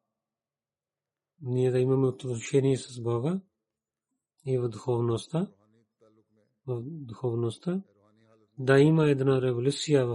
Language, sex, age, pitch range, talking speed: Bulgarian, male, 40-59, 120-140 Hz, 75 wpm